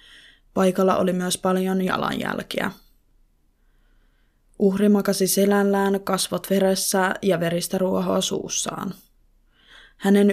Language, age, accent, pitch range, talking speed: Finnish, 20-39, native, 175-195 Hz, 85 wpm